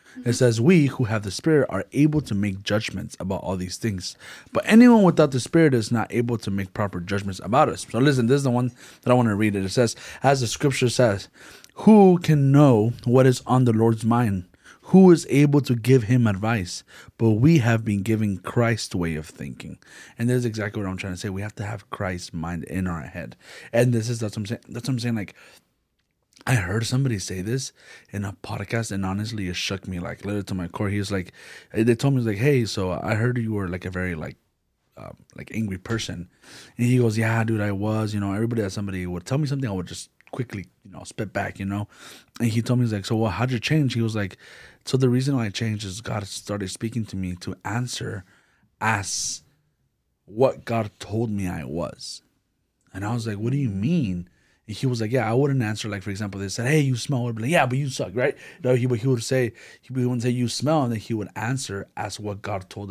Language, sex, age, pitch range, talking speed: English, male, 30-49, 100-125 Hz, 240 wpm